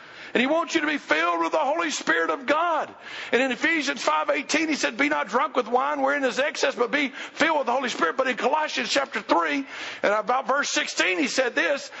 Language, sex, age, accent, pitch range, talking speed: English, male, 50-69, American, 235-310 Hz, 235 wpm